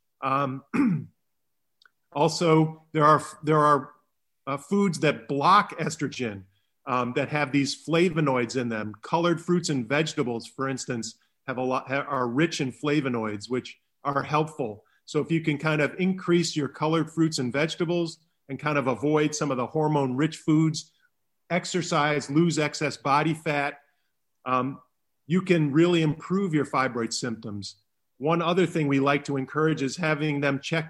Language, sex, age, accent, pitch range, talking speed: English, male, 40-59, American, 130-155 Hz, 155 wpm